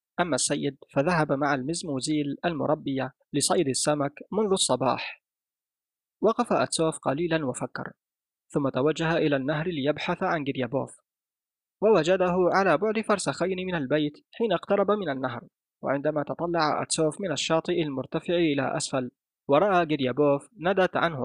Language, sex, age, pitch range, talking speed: Arabic, male, 20-39, 140-180 Hz, 120 wpm